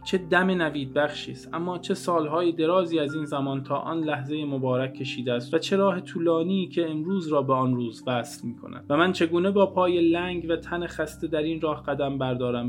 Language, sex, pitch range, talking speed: Persian, male, 135-165 Hz, 205 wpm